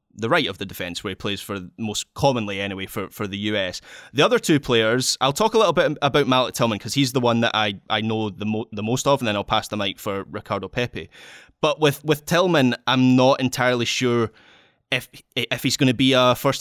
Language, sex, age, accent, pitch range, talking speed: English, male, 20-39, British, 115-140 Hz, 240 wpm